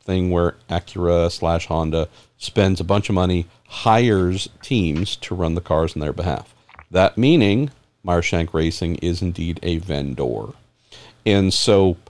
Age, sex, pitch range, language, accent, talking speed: 50-69, male, 90-110 Hz, English, American, 145 wpm